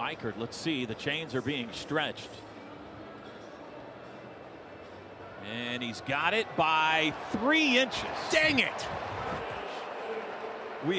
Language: English